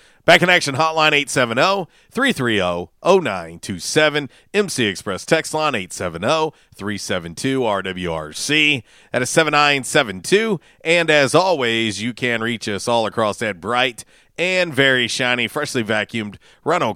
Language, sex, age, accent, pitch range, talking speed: English, male, 40-59, American, 105-140 Hz, 105 wpm